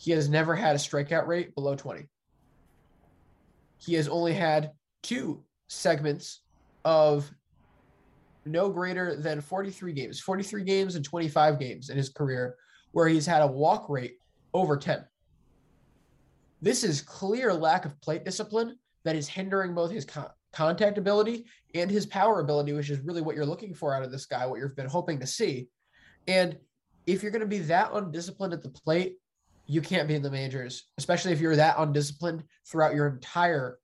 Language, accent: English, American